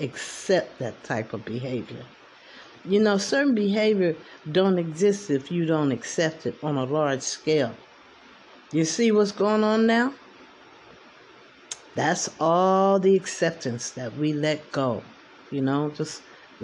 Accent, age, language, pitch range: American, 50-69, English, 140-185 Hz